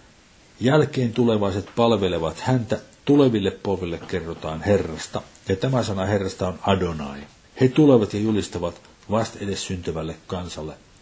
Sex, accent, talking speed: male, native, 120 wpm